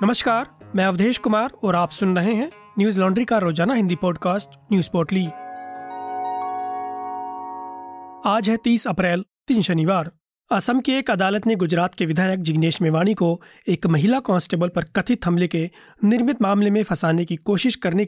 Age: 30-49